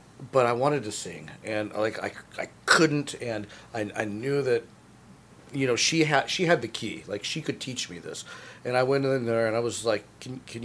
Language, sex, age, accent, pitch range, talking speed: English, male, 40-59, American, 110-135 Hz, 225 wpm